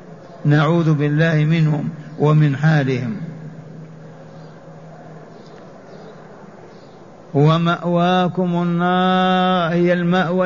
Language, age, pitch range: Arabic, 50-69, 160-180 Hz